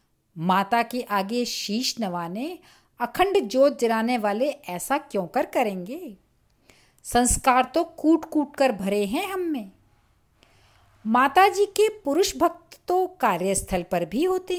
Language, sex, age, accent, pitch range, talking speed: Hindi, female, 50-69, native, 195-310 Hz, 130 wpm